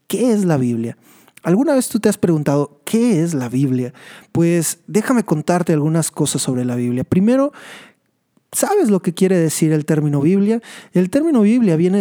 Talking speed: 175 wpm